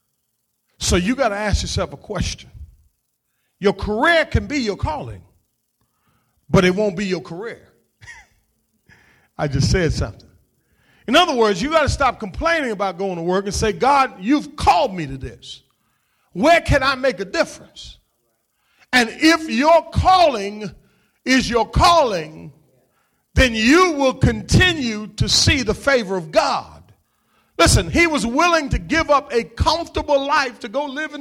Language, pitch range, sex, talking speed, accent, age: English, 200-300 Hz, male, 155 wpm, American, 40-59